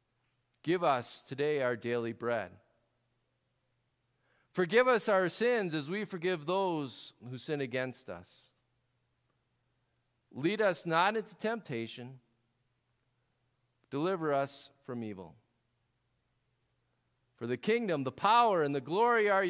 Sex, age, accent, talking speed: male, 40-59, American, 110 wpm